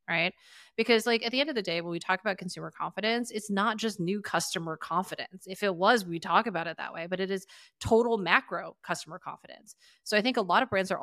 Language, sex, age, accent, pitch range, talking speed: English, female, 30-49, American, 165-205 Hz, 245 wpm